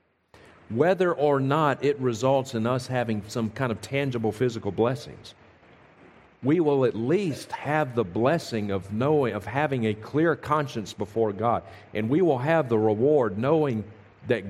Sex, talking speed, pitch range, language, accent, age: male, 155 wpm, 110-135 Hz, English, American, 50-69